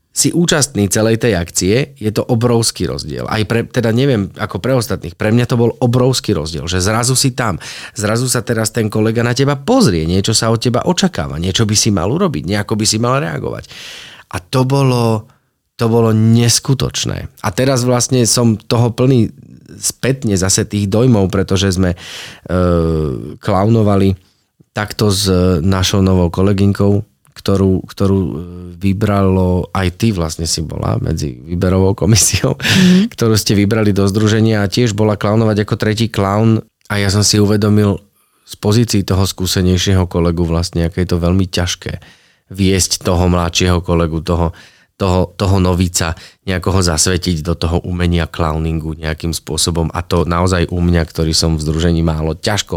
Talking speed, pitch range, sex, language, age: 160 wpm, 85-110 Hz, male, Slovak, 30-49